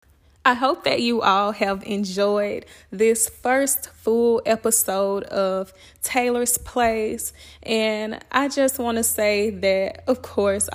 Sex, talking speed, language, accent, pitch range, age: female, 130 wpm, English, American, 195-230 Hz, 10-29